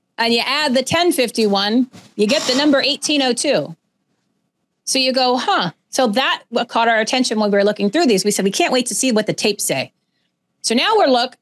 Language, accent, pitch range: English, American, 210-280 Hz